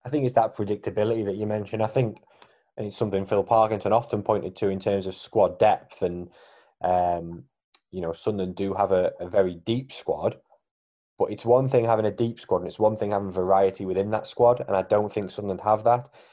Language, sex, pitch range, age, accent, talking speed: English, male, 95-115 Hz, 20-39, British, 215 wpm